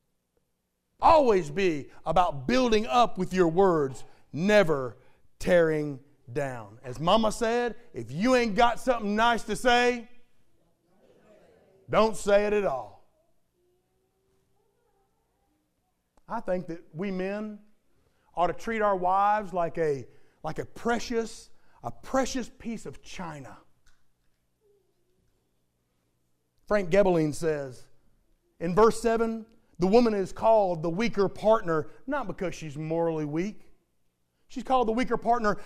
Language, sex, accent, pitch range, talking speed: English, male, American, 165-245 Hz, 120 wpm